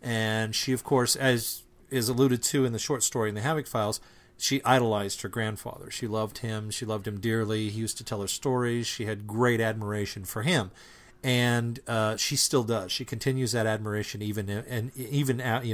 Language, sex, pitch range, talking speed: English, male, 110-130 Hz, 195 wpm